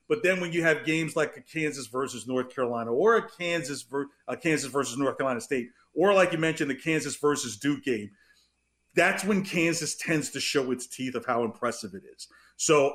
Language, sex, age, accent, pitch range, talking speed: English, male, 40-59, American, 135-185 Hz, 200 wpm